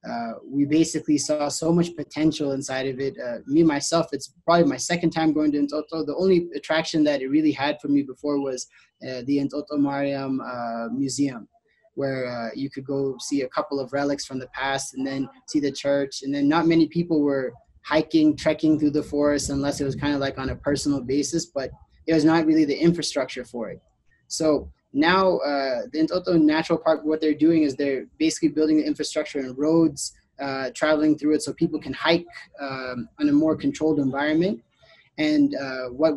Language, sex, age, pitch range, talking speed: English, male, 20-39, 140-165 Hz, 200 wpm